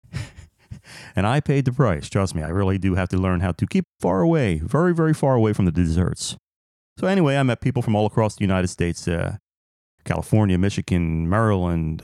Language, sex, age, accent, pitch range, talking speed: English, male, 30-49, American, 95-130 Hz, 200 wpm